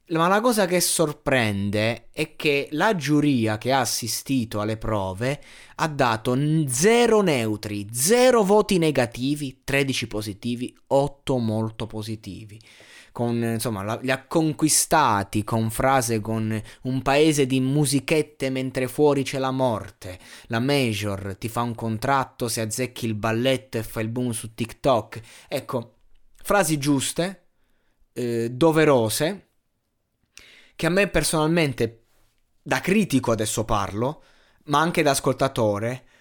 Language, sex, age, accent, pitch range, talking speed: Italian, male, 20-39, native, 115-160 Hz, 125 wpm